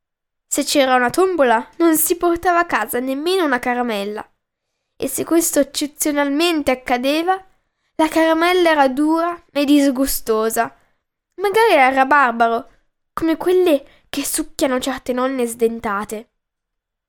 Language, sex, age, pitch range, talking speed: Italian, female, 10-29, 240-315 Hz, 115 wpm